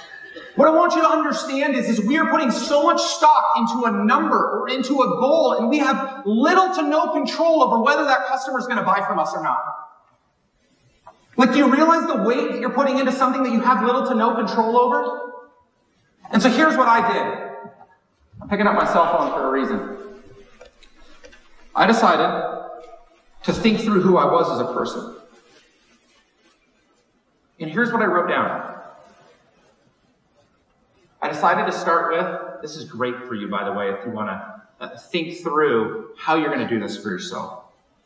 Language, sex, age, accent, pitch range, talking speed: English, male, 40-59, American, 175-270 Hz, 185 wpm